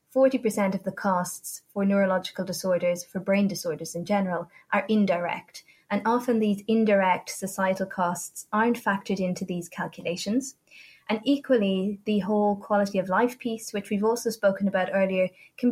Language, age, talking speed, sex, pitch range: English, 20-39, 150 wpm, female, 180-215 Hz